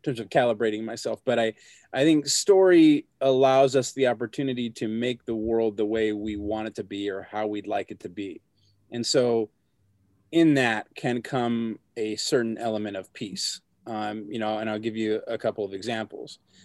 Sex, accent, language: male, American, English